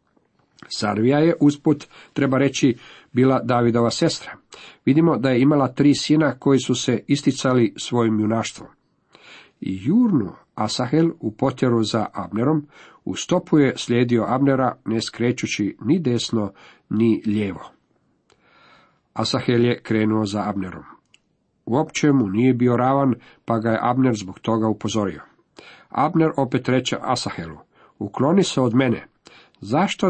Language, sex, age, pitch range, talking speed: Croatian, male, 50-69, 110-140 Hz, 130 wpm